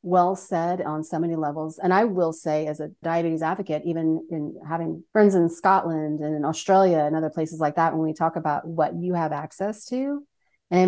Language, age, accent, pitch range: English, 40-59, American, 160-190 Hz